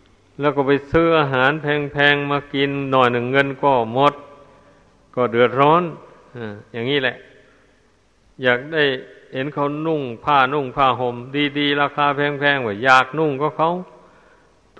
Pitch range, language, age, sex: 125-145 Hz, Thai, 60-79, male